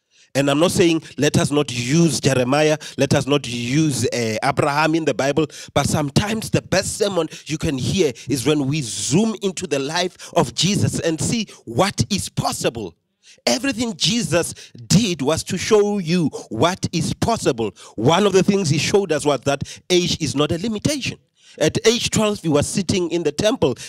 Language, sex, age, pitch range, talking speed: English, male, 40-59, 150-205 Hz, 185 wpm